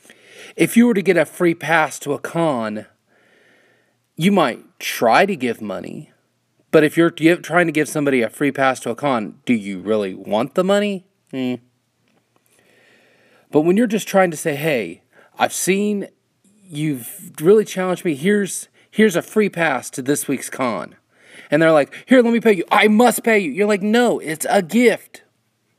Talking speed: 180 wpm